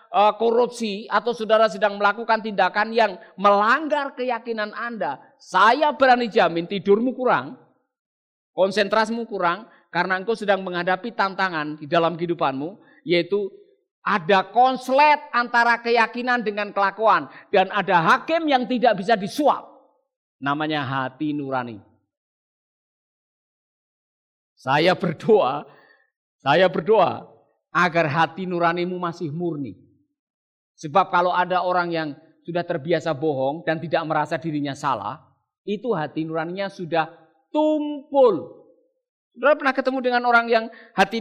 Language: Indonesian